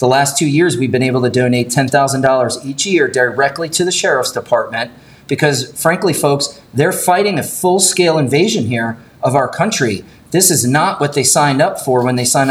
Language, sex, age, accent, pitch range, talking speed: English, male, 30-49, American, 125-150 Hz, 200 wpm